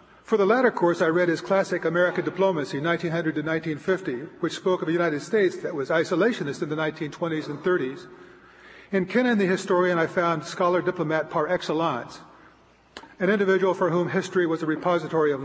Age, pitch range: 50-69, 155-185 Hz